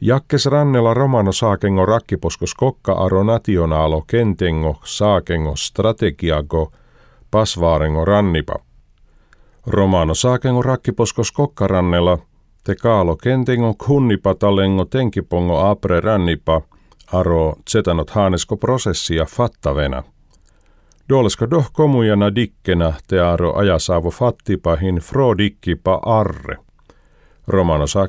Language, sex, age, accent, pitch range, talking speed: Finnish, male, 50-69, native, 85-115 Hz, 90 wpm